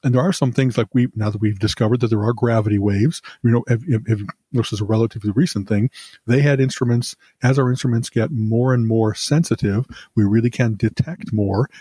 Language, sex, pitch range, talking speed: English, male, 110-130 Hz, 205 wpm